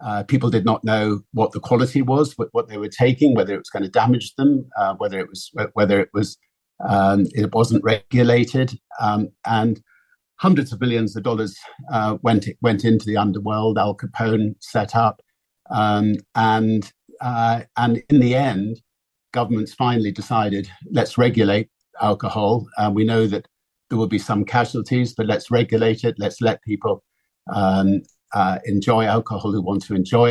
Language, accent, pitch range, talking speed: English, British, 100-120 Hz, 170 wpm